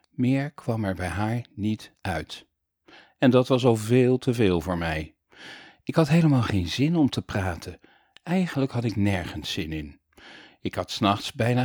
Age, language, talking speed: 50-69, Dutch, 175 wpm